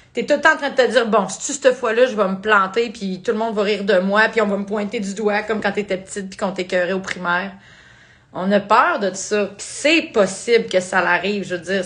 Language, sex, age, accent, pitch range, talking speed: French, female, 30-49, Canadian, 195-250 Hz, 295 wpm